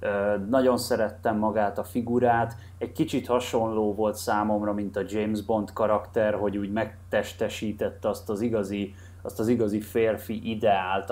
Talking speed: 130 wpm